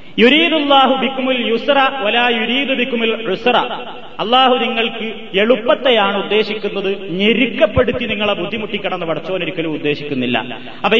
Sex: male